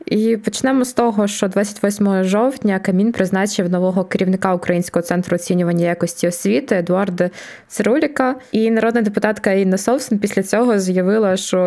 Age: 20-39